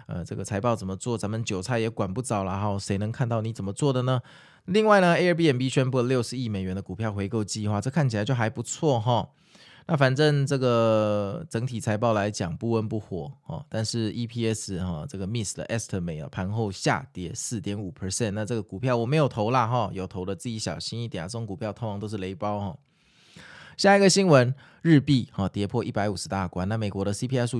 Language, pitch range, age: Chinese, 100-125 Hz, 20-39